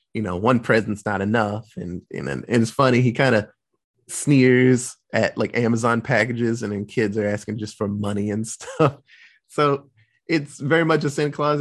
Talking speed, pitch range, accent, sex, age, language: 185 wpm, 110-150 Hz, American, male, 30-49, English